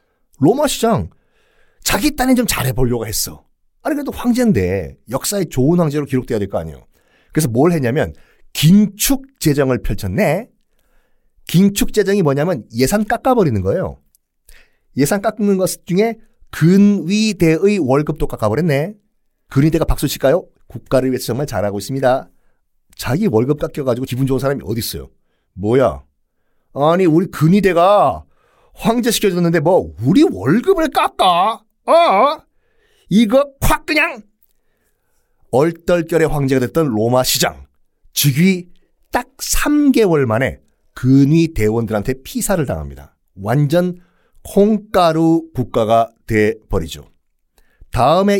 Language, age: Korean, 40-59